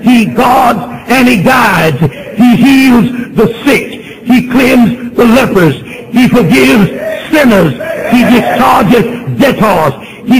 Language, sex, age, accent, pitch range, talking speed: English, male, 60-79, American, 220-260 Hz, 115 wpm